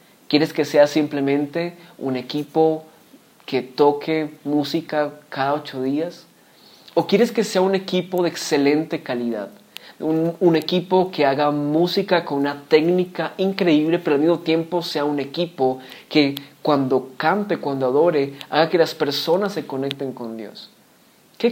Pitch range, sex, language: 135-170 Hz, male, English